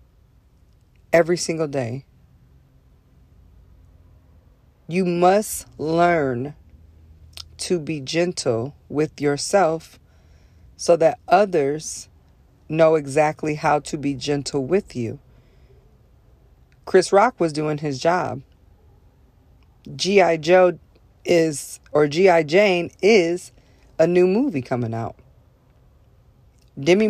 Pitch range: 115-170 Hz